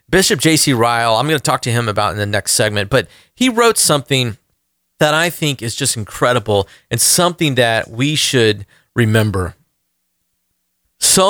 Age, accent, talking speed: 40-59, American, 165 wpm